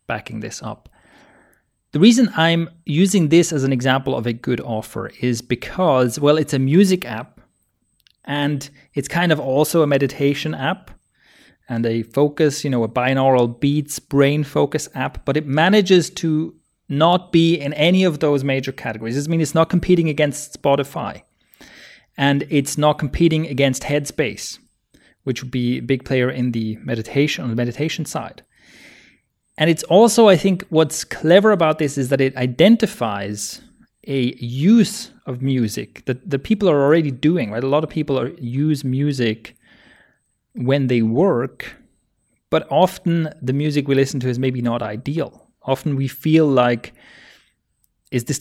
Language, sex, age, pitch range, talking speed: English, male, 30-49, 130-160 Hz, 160 wpm